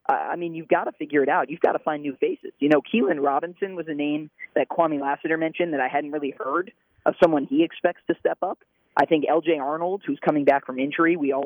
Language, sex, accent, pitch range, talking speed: English, male, American, 140-170 Hz, 255 wpm